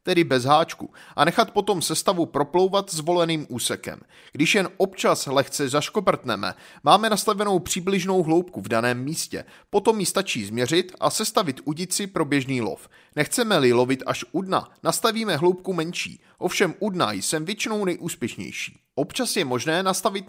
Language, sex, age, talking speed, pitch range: Czech, male, 30-49, 150 wpm, 140-195 Hz